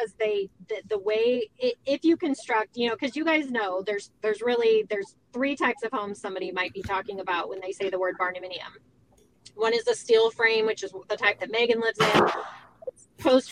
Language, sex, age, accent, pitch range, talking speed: English, female, 20-39, American, 195-245 Hz, 210 wpm